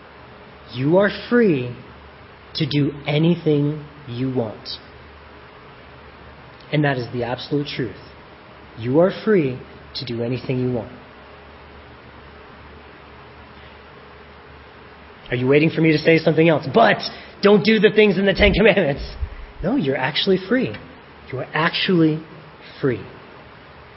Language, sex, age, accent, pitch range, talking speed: English, male, 30-49, American, 115-160 Hz, 120 wpm